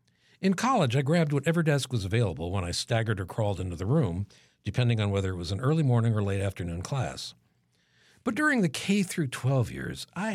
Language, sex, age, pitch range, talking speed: English, male, 60-79, 100-145 Hz, 210 wpm